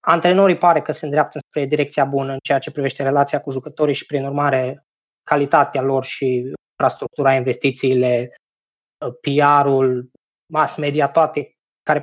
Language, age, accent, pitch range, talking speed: Romanian, 20-39, native, 140-160 Hz, 140 wpm